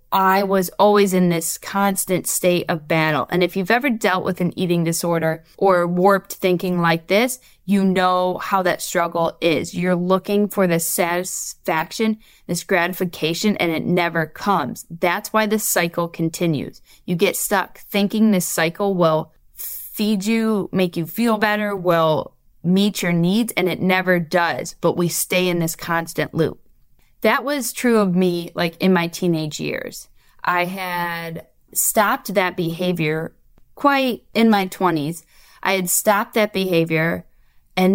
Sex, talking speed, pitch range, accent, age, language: female, 155 wpm, 170-205 Hz, American, 20-39, English